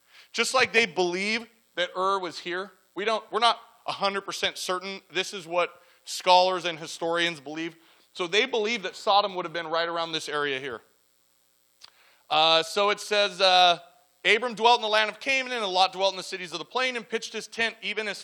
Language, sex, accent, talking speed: English, male, American, 200 wpm